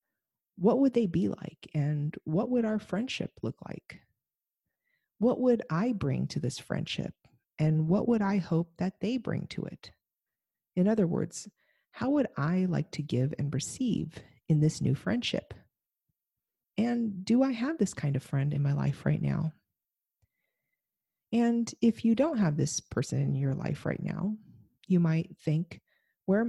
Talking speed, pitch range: 165 wpm, 155-225 Hz